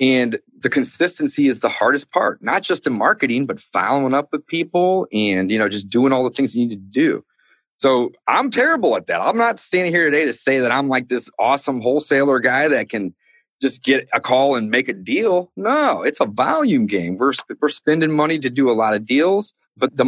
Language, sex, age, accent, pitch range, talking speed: English, male, 30-49, American, 115-155 Hz, 225 wpm